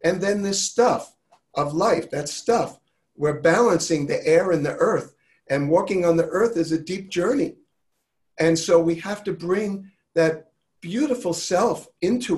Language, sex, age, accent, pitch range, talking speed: English, male, 50-69, American, 140-170 Hz, 165 wpm